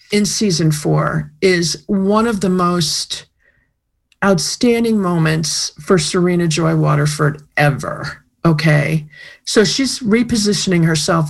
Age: 50-69